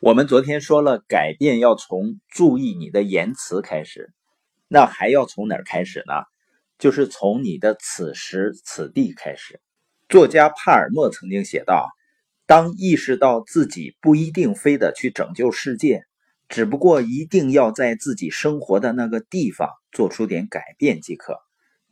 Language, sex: Chinese, male